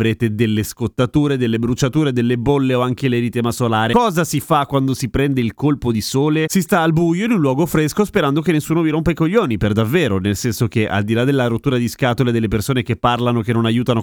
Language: Italian